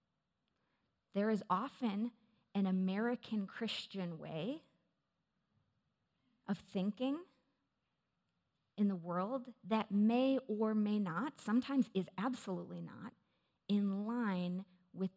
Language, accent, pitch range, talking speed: English, American, 180-220 Hz, 95 wpm